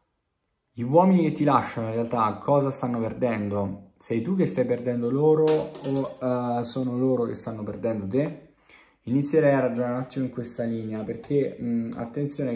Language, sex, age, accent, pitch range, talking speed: Italian, male, 20-39, native, 100-125 Hz, 165 wpm